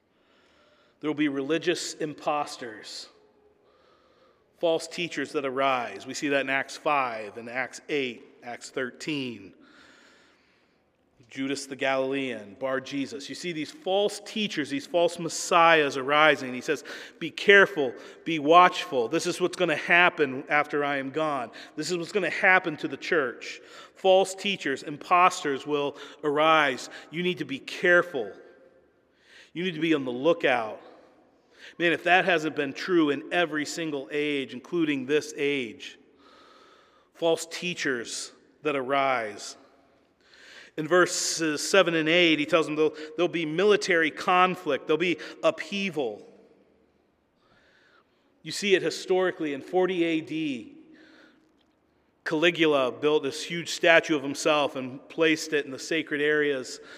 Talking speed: 135 wpm